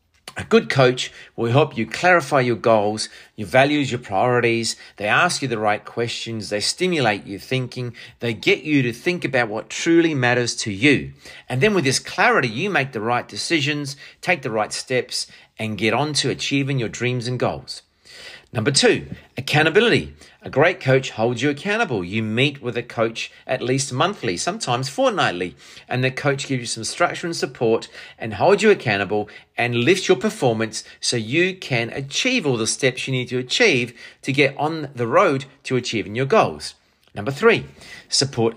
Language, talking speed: English, 180 wpm